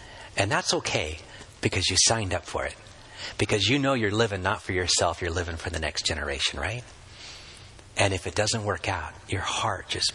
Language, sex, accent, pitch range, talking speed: English, male, American, 95-125 Hz, 195 wpm